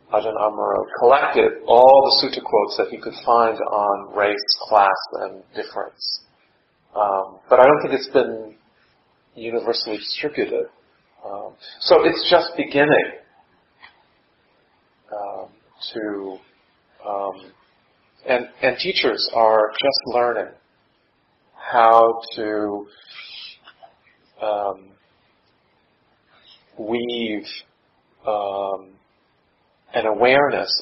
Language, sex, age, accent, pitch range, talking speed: English, male, 40-59, American, 105-130 Hz, 90 wpm